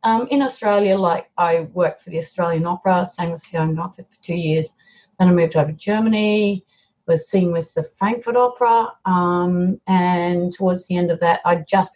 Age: 30-49